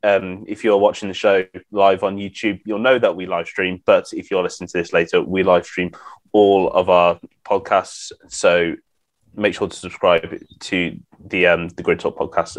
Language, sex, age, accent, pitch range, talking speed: English, male, 20-39, British, 90-100 Hz, 205 wpm